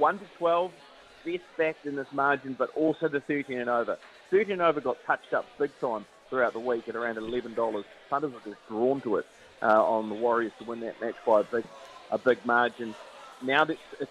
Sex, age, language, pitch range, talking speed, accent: male, 30-49, English, 115-145 Hz, 215 wpm, Australian